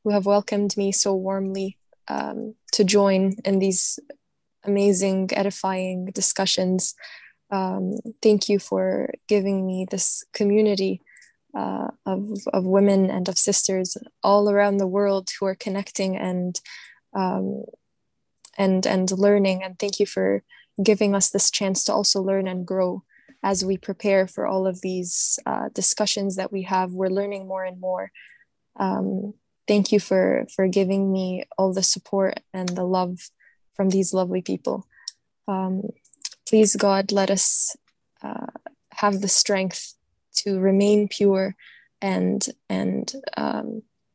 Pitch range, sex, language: 190-205 Hz, female, English